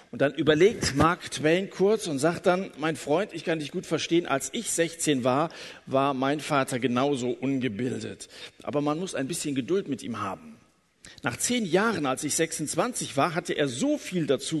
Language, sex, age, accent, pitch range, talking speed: German, male, 50-69, German, 140-180 Hz, 190 wpm